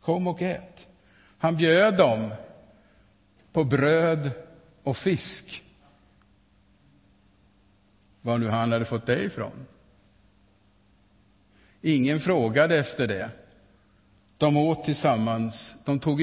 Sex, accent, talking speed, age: male, Norwegian, 95 wpm, 50-69